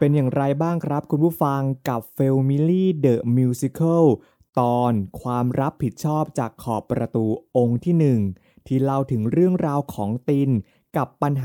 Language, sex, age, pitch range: Thai, male, 20-39, 115-160 Hz